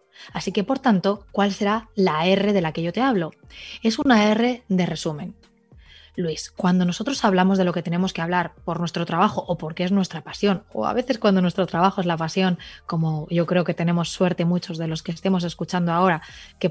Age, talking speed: 20-39, 215 wpm